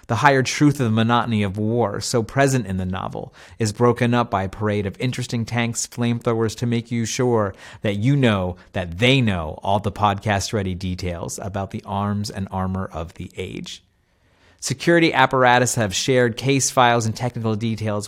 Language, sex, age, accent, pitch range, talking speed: English, male, 30-49, American, 100-120 Hz, 180 wpm